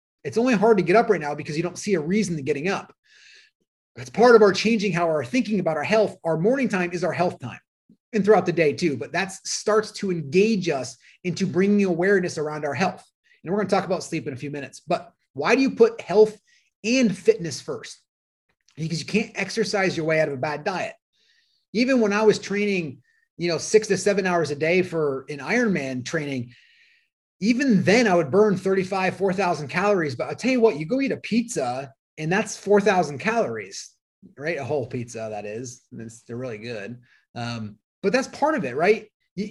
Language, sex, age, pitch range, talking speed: English, male, 30-49, 155-215 Hz, 215 wpm